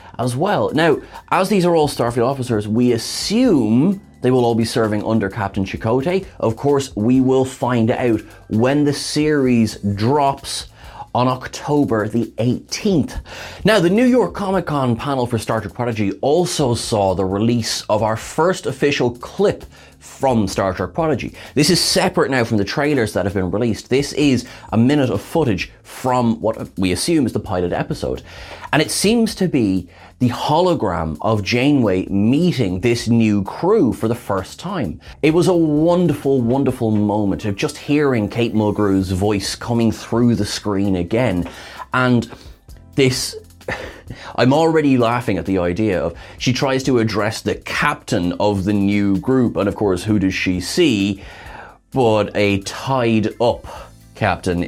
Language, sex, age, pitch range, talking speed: English, male, 30-49, 100-135 Hz, 160 wpm